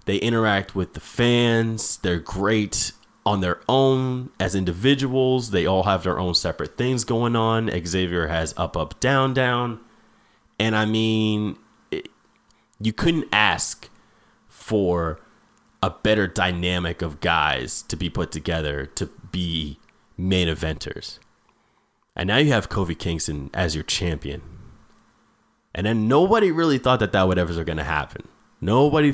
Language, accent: English, American